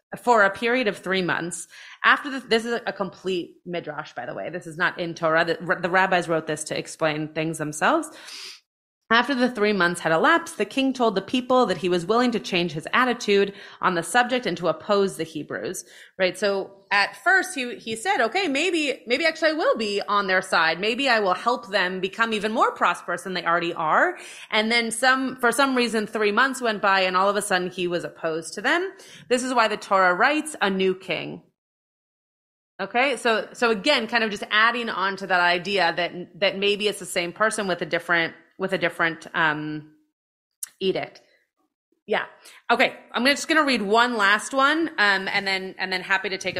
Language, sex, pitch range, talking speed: English, female, 175-240 Hz, 210 wpm